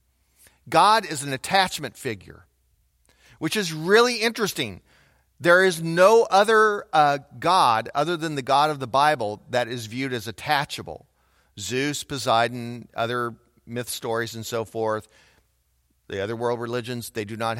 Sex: male